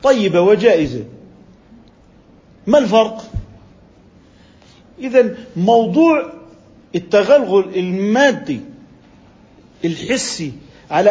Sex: male